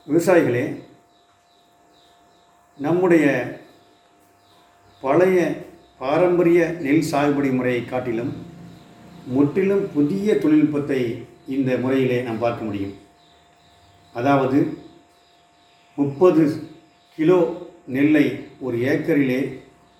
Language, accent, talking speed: Tamil, native, 65 wpm